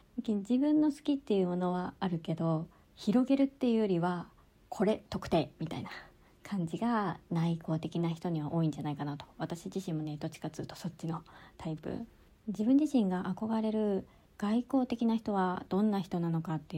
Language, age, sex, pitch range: Japanese, 40-59, male, 170-230 Hz